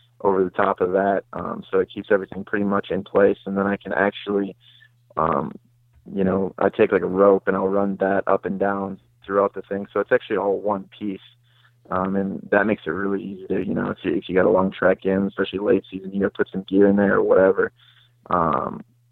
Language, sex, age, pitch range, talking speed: English, male, 20-39, 95-110 Hz, 230 wpm